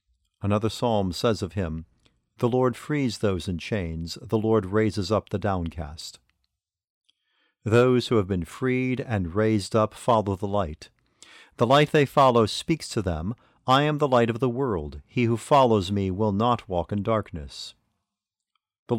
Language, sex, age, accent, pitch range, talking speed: English, male, 50-69, American, 100-125 Hz, 165 wpm